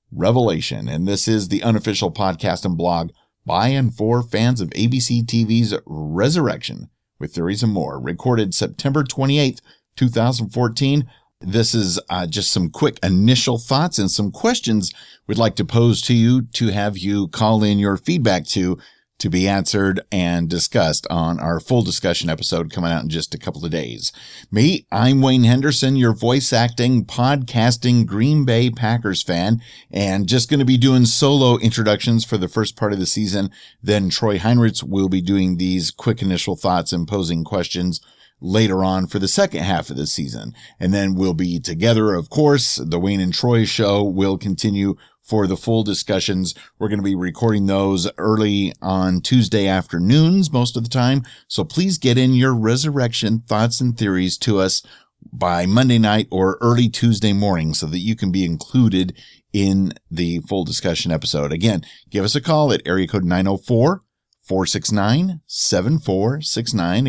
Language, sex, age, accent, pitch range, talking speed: English, male, 50-69, American, 95-120 Hz, 165 wpm